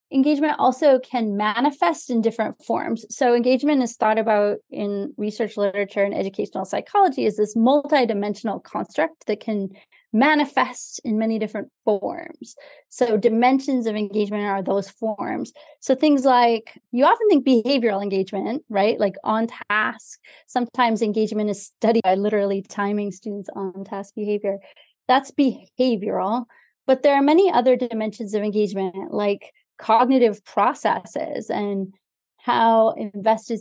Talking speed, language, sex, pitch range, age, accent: 135 wpm, English, female, 205-255 Hz, 30-49, American